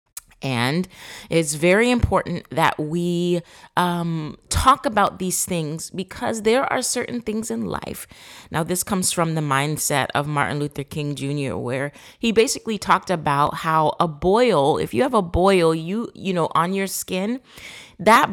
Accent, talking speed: American, 160 wpm